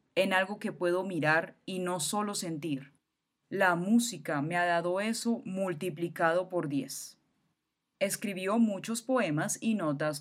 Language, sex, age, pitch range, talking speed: Spanish, female, 10-29, 160-210 Hz, 135 wpm